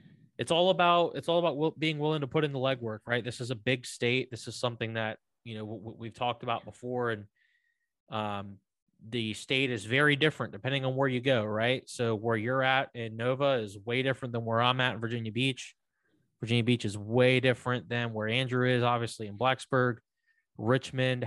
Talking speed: 200 wpm